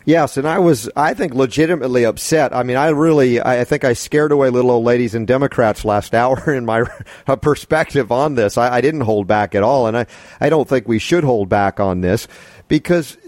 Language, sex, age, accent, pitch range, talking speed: English, male, 40-59, American, 125-160 Hz, 215 wpm